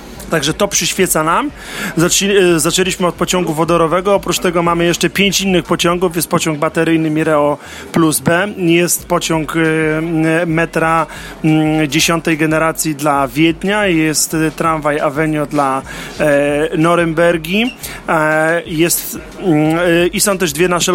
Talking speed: 110 wpm